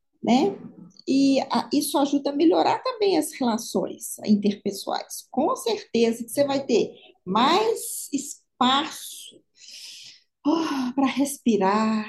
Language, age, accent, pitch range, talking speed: Portuguese, 50-69, Brazilian, 225-285 Hz, 110 wpm